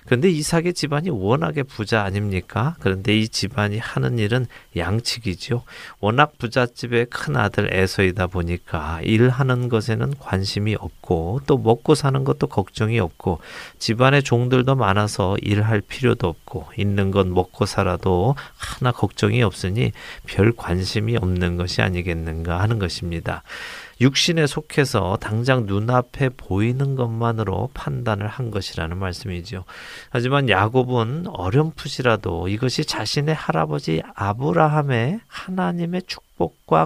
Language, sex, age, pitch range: Korean, male, 40-59, 95-130 Hz